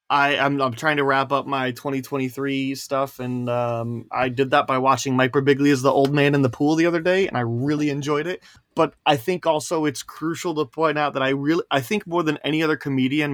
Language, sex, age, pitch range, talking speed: English, male, 20-39, 120-145 Hz, 240 wpm